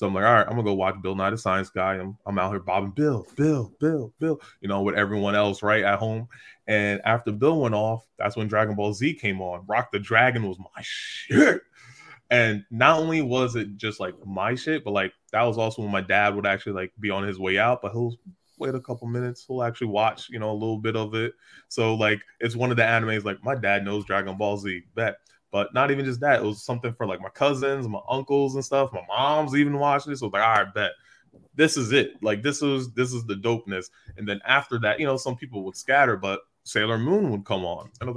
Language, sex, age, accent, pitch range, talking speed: English, male, 20-39, American, 100-130 Hz, 255 wpm